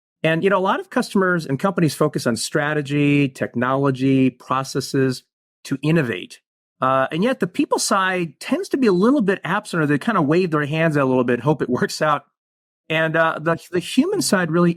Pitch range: 130-170 Hz